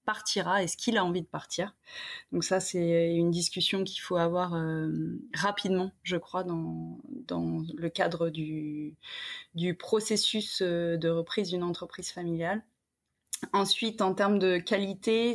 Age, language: 20-39, French